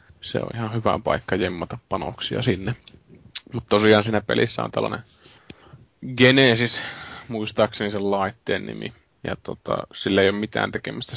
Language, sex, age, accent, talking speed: Finnish, male, 20-39, native, 140 wpm